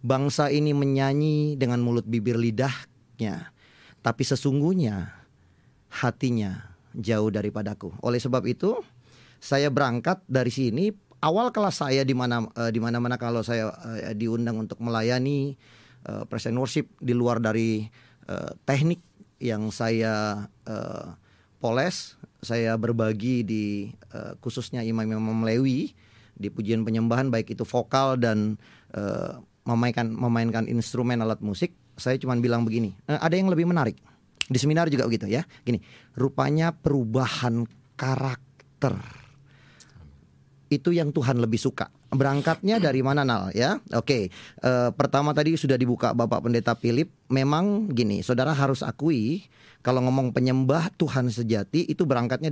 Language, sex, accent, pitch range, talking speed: English, male, Indonesian, 115-135 Hz, 130 wpm